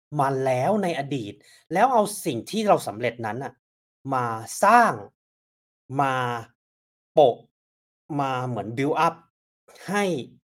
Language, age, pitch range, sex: Thai, 30-49, 115-170 Hz, male